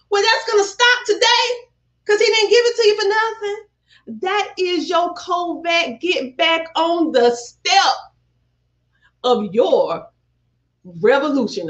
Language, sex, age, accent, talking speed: English, female, 30-49, American, 140 wpm